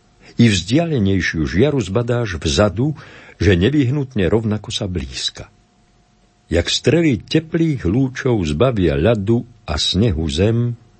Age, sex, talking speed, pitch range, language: 60-79, male, 105 wpm, 85-115 Hz, Slovak